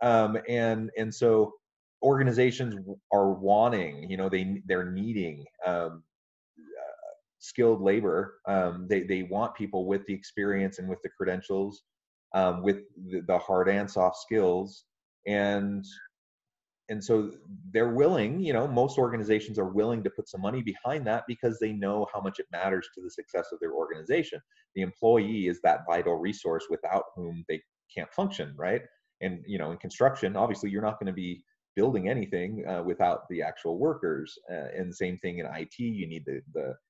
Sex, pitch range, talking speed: male, 95-125 Hz, 170 wpm